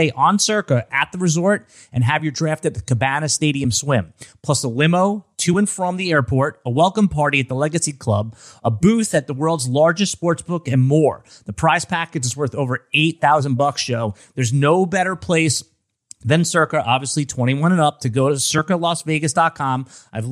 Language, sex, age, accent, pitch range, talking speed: English, male, 30-49, American, 130-165 Hz, 190 wpm